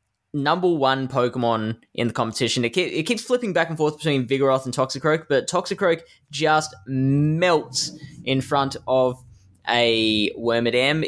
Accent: Australian